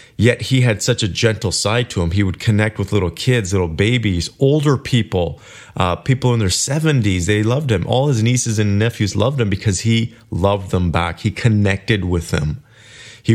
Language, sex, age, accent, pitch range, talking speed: English, male, 30-49, American, 95-115 Hz, 200 wpm